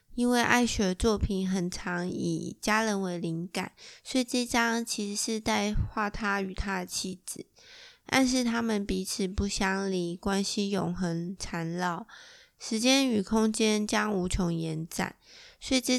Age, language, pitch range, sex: 20-39, Chinese, 180-225 Hz, female